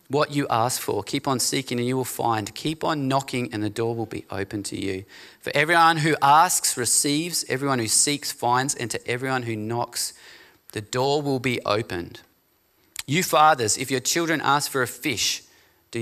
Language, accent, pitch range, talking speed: English, Australian, 110-135 Hz, 190 wpm